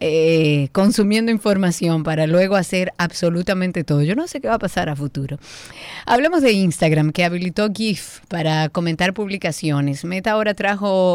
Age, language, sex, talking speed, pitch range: 30-49, Spanish, female, 155 wpm, 170-210 Hz